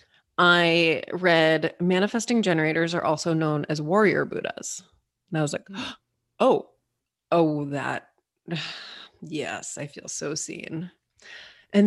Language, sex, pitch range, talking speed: English, female, 160-210 Hz, 115 wpm